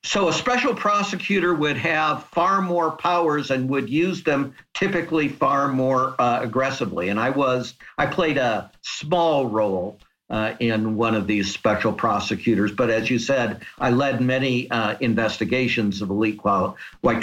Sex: male